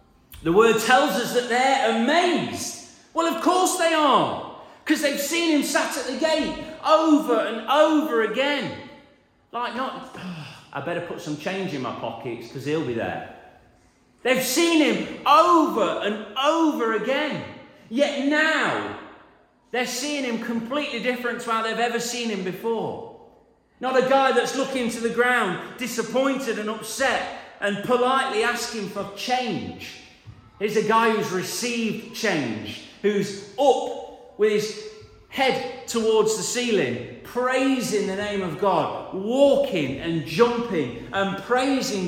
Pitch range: 195-270 Hz